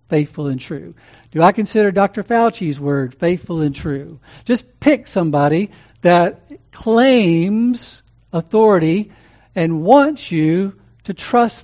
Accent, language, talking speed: American, English, 120 wpm